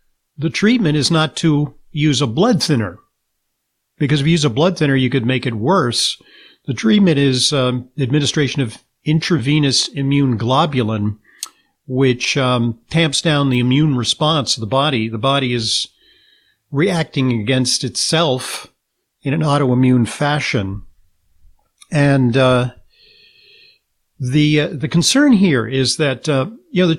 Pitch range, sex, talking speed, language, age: 120-150 Hz, male, 140 wpm, English, 50-69